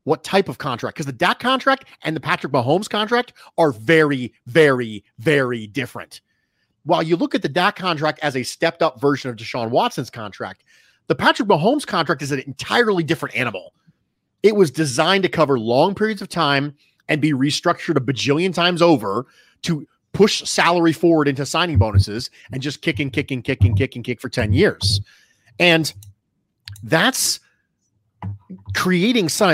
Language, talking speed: English, 170 wpm